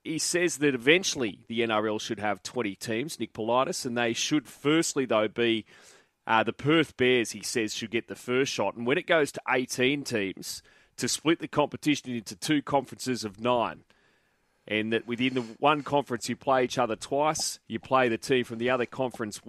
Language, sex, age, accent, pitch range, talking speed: English, male, 30-49, Australian, 115-140 Hz, 195 wpm